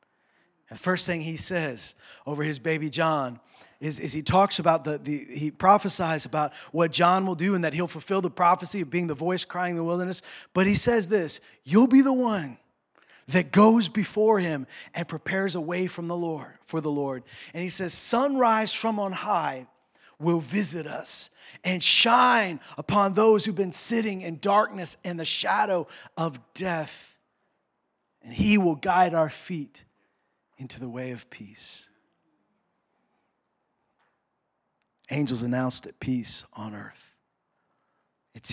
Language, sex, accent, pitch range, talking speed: English, male, American, 145-185 Hz, 155 wpm